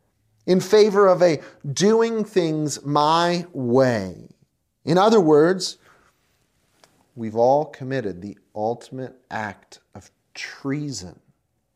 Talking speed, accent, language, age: 95 wpm, American, English, 30-49